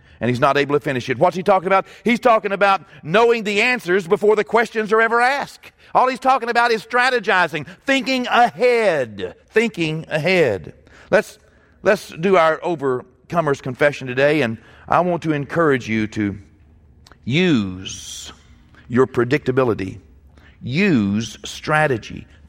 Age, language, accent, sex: 50-69, English, American, male